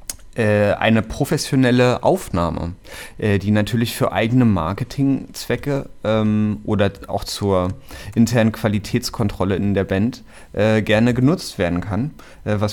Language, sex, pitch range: German, male, 95-120 Hz